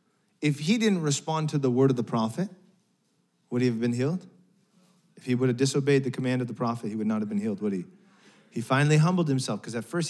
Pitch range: 125-185 Hz